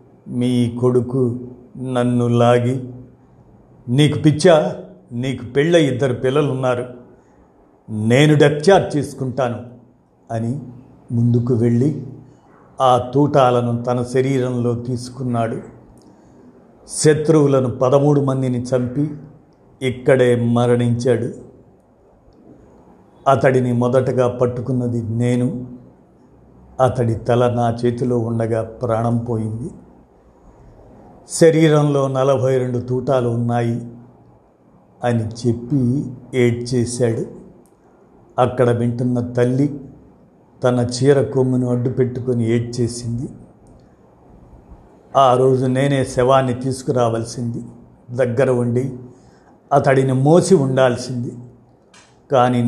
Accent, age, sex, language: native, 50-69, male, Telugu